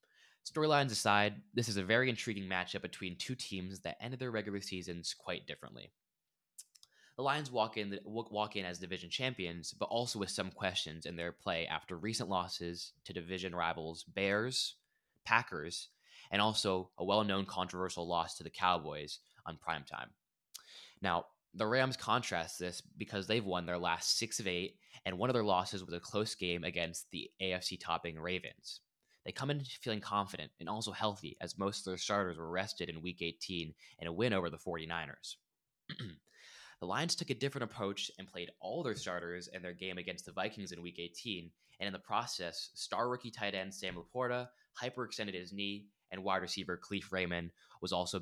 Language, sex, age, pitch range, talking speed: English, male, 10-29, 90-110 Hz, 180 wpm